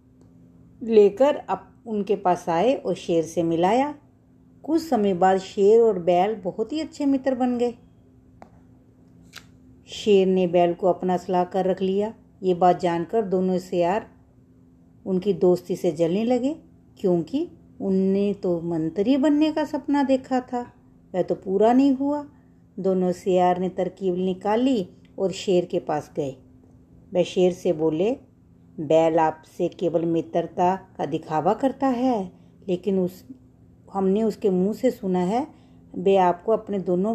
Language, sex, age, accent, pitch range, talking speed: Hindi, female, 50-69, native, 175-230 Hz, 140 wpm